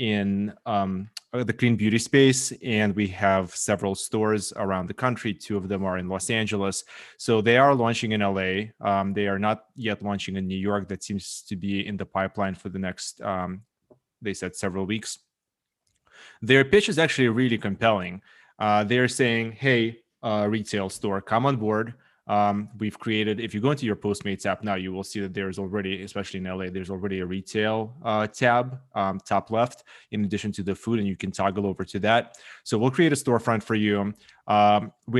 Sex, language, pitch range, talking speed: male, English, 100-115 Hz, 200 wpm